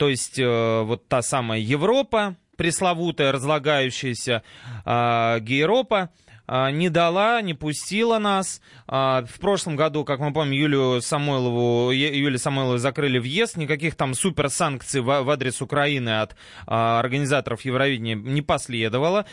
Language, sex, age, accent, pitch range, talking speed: Russian, male, 20-39, native, 125-175 Hz, 125 wpm